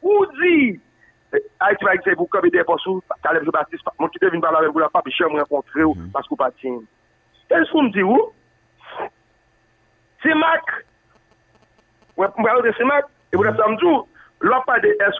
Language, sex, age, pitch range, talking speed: French, male, 50-69, 175-250 Hz, 85 wpm